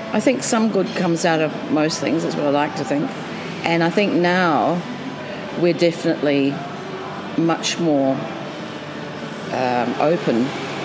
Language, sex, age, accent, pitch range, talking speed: English, female, 50-69, British, 135-170 Hz, 140 wpm